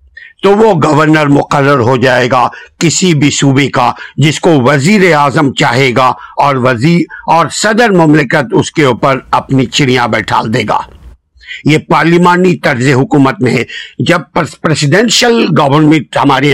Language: Urdu